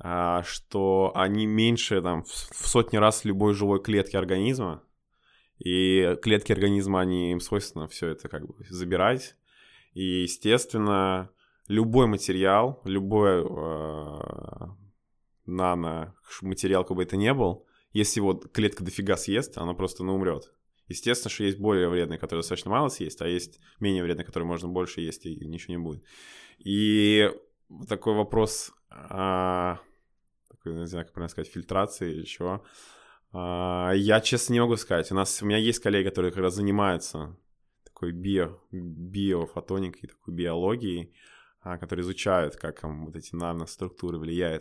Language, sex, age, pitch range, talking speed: Russian, male, 20-39, 85-100 Hz, 140 wpm